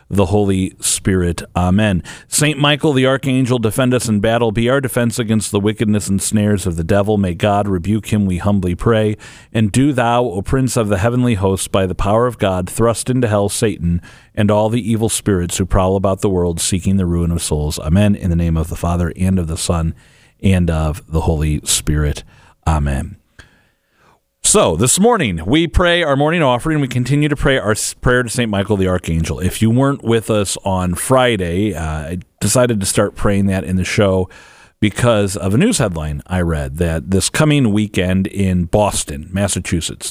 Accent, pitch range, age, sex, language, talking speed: American, 90-120 Hz, 40-59, male, English, 195 wpm